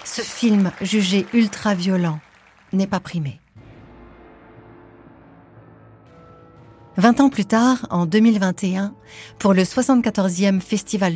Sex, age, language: female, 50-69, French